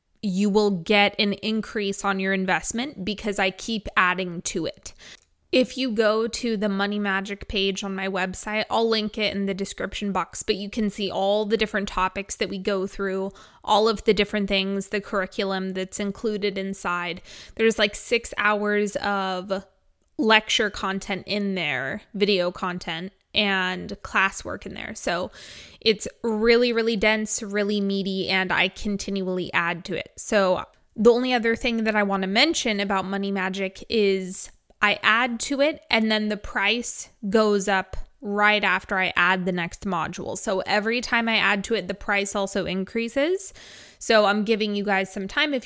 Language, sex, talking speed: English, female, 175 wpm